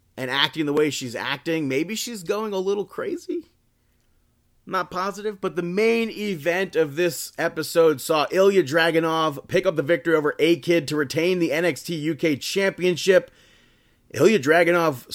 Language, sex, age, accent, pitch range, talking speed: English, male, 30-49, American, 140-185 Hz, 150 wpm